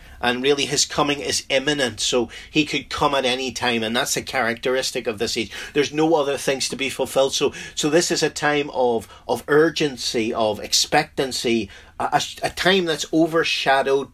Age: 40-59